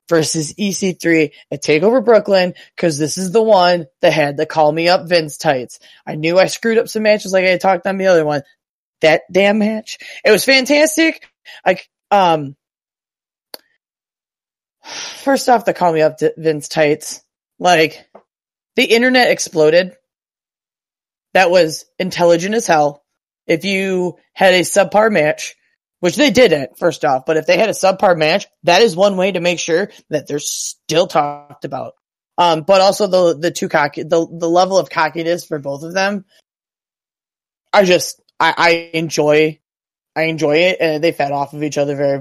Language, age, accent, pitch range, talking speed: English, 20-39, American, 155-200 Hz, 170 wpm